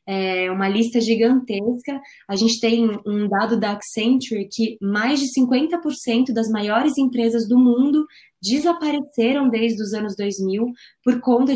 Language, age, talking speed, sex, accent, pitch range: Portuguese, 20-39, 140 wpm, female, Brazilian, 210-255 Hz